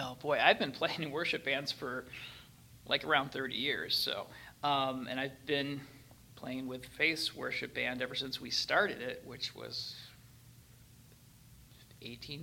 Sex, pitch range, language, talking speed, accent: male, 125-140 Hz, English, 150 wpm, American